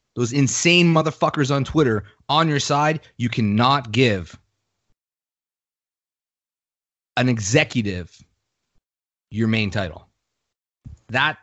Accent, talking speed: American, 90 wpm